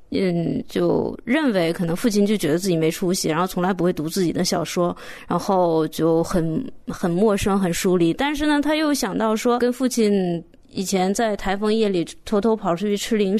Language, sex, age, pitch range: Chinese, female, 20-39, 190-260 Hz